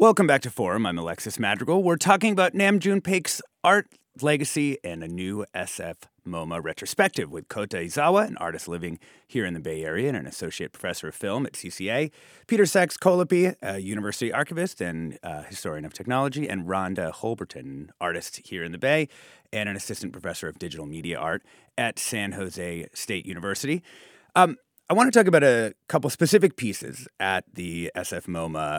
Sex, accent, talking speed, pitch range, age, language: male, American, 170 wpm, 95-155 Hz, 30-49, English